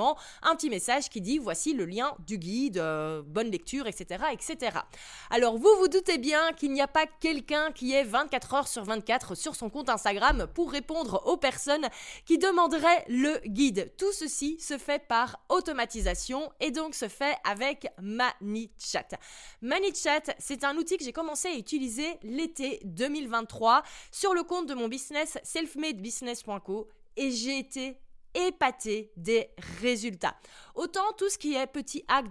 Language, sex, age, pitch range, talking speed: French, female, 20-39, 230-300 Hz, 160 wpm